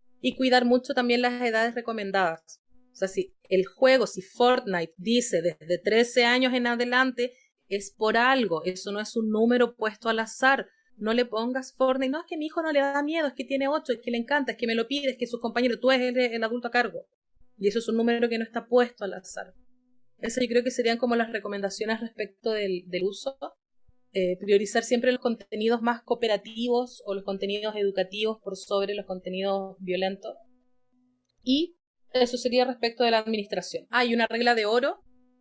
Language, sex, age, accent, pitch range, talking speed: Spanish, female, 30-49, Venezuelan, 205-250 Hz, 205 wpm